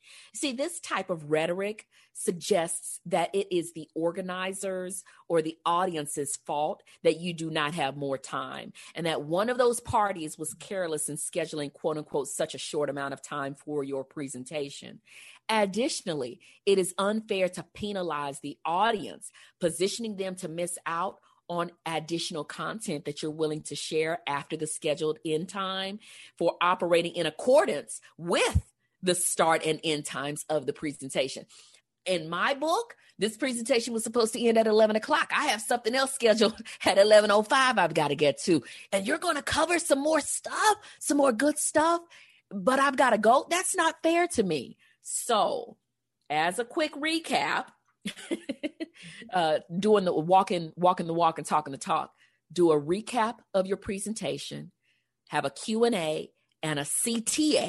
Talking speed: 160 wpm